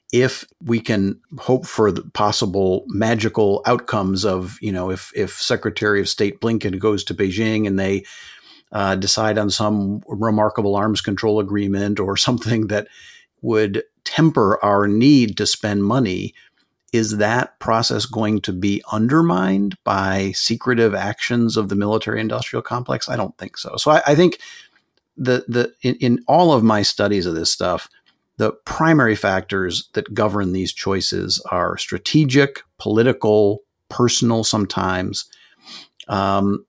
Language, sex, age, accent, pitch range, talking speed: English, male, 50-69, American, 100-115 Hz, 145 wpm